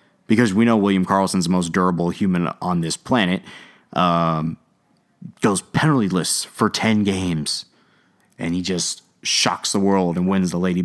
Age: 30-49